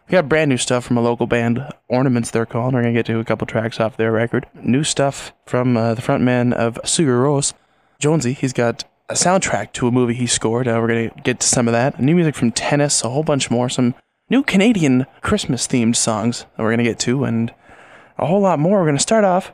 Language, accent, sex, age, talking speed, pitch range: English, American, male, 20-39, 245 wpm, 120-150 Hz